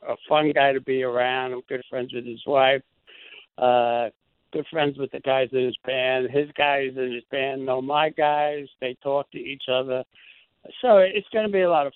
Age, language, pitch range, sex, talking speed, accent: 60-79, English, 130-155 Hz, male, 210 wpm, American